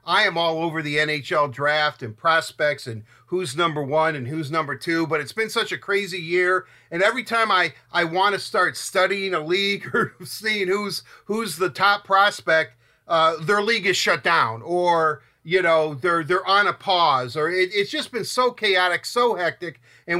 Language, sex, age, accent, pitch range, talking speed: English, male, 50-69, American, 145-185 Hz, 195 wpm